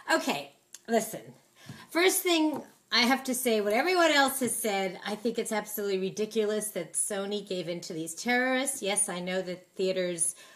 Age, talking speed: 40-59, 170 wpm